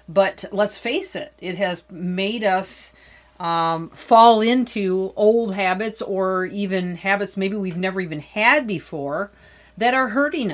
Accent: American